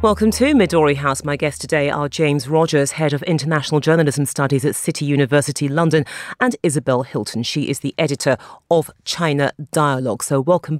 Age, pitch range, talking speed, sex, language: 40-59, 145-215 Hz, 170 wpm, female, English